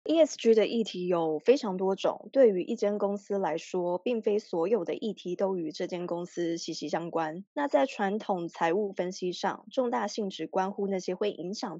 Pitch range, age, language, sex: 180-225 Hz, 20-39, Chinese, female